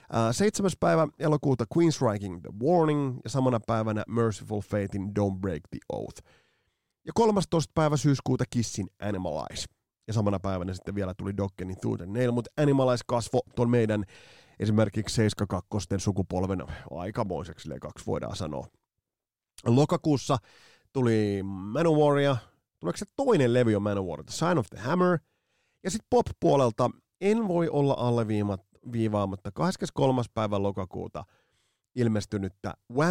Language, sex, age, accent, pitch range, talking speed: Finnish, male, 30-49, native, 100-140 Hz, 135 wpm